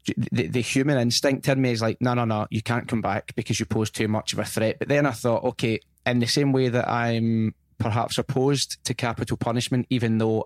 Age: 20-39